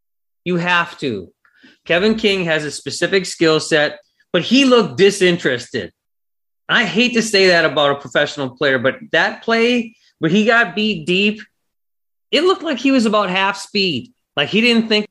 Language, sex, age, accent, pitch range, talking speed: English, male, 30-49, American, 165-215 Hz, 170 wpm